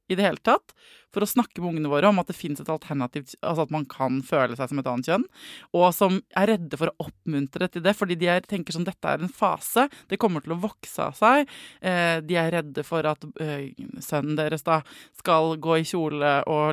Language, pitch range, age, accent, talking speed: English, 160-215 Hz, 20-39, Swedish, 235 wpm